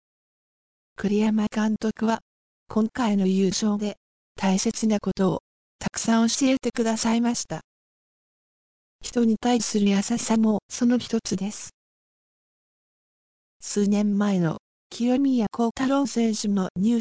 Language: Japanese